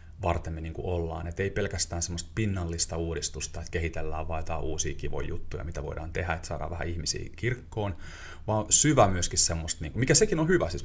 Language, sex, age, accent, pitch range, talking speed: Finnish, male, 30-49, native, 85-100 Hz, 190 wpm